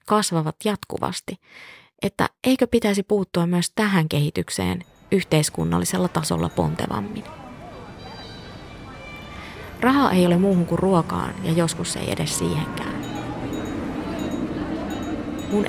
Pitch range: 160-190 Hz